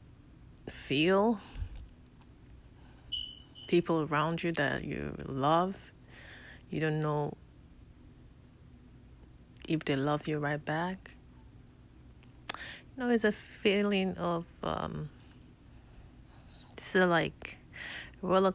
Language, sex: English, female